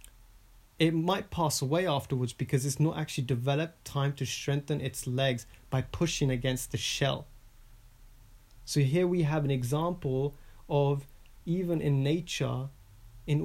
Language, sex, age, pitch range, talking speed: English, male, 30-49, 110-150 Hz, 140 wpm